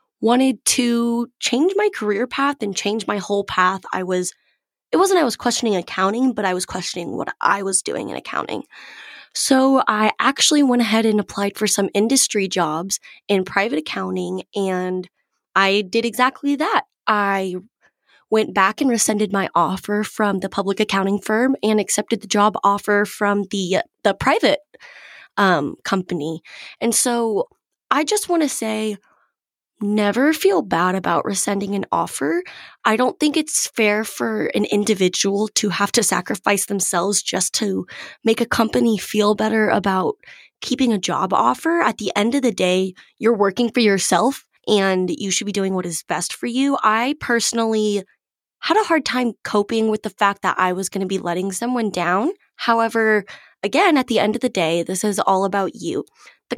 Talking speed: 175 wpm